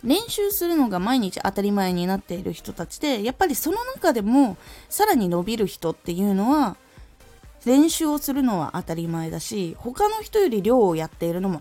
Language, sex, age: Japanese, female, 20-39